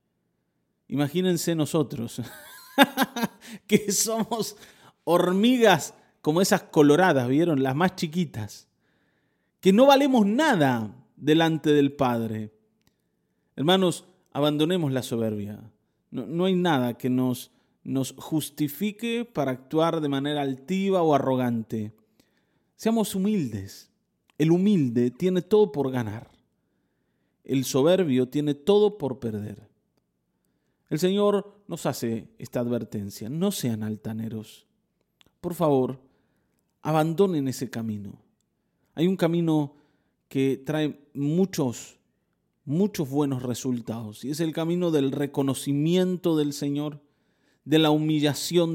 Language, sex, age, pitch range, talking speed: Spanish, male, 30-49, 125-180 Hz, 105 wpm